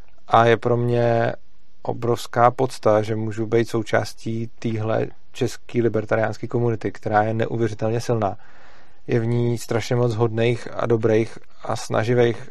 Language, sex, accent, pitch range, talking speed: Czech, male, native, 110-120 Hz, 135 wpm